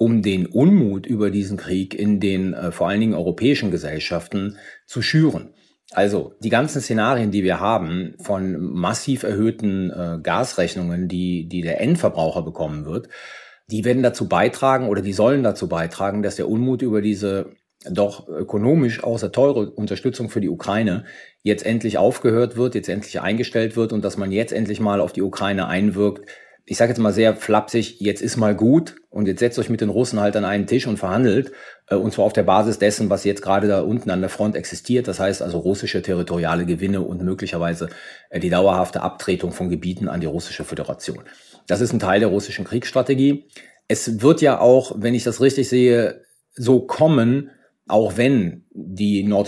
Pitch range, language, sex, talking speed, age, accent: 95-115 Hz, German, male, 180 wpm, 40-59, German